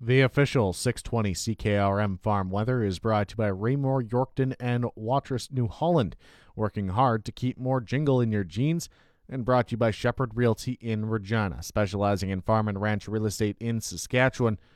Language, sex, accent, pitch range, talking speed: English, male, American, 105-125 Hz, 180 wpm